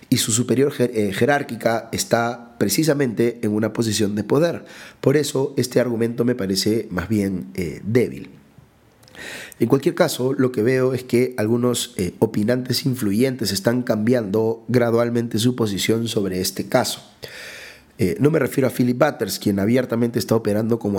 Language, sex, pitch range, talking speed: Spanish, male, 105-130 Hz, 150 wpm